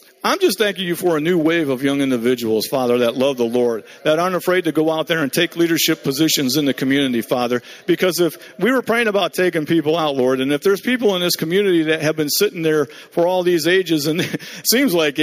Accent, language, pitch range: American, English, 150-190 Hz